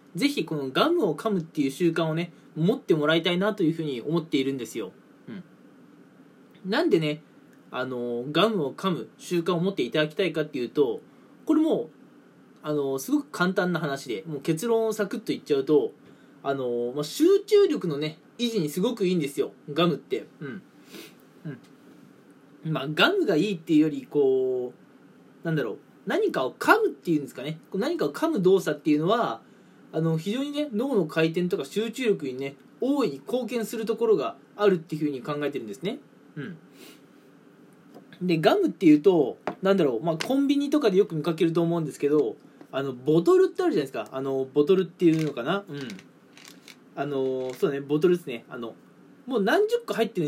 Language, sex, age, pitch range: Japanese, male, 20-39, 150-240 Hz